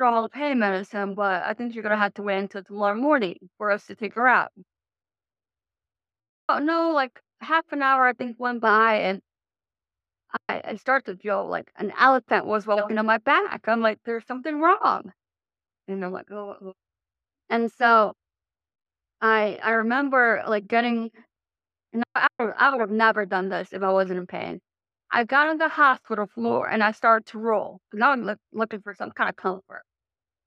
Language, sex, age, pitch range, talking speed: English, female, 30-49, 195-245 Hz, 190 wpm